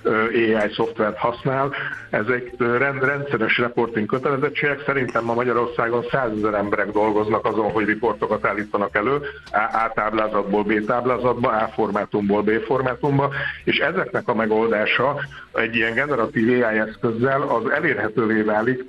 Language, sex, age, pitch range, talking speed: Hungarian, male, 60-79, 110-130 Hz, 125 wpm